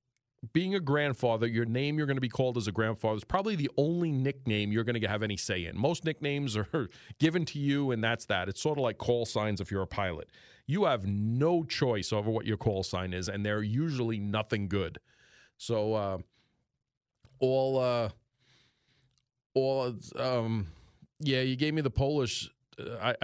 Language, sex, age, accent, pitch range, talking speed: English, male, 40-59, American, 110-135 Hz, 185 wpm